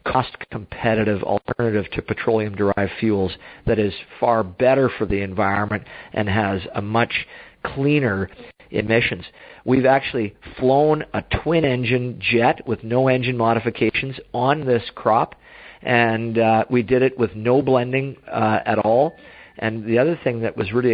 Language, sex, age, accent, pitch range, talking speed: English, male, 50-69, American, 100-120 Hz, 140 wpm